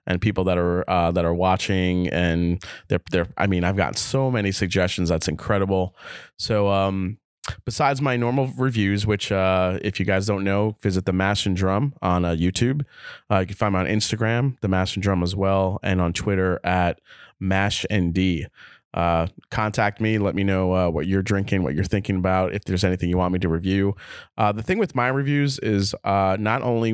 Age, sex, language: 20-39, male, English